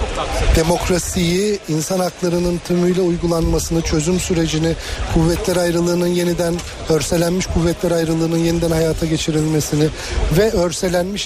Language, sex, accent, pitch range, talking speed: Turkish, male, native, 155-185 Hz, 95 wpm